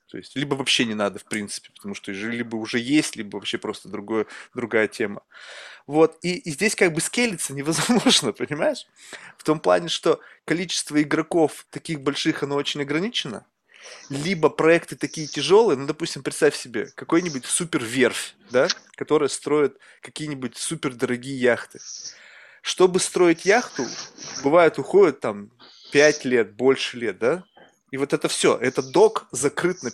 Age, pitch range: 20-39, 140-185 Hz